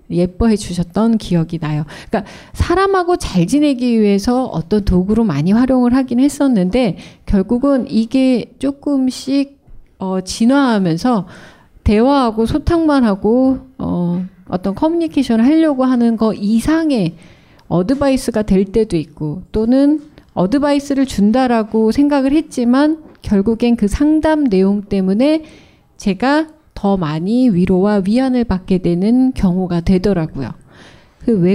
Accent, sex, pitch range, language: native, female, 190-270 Hz, Korean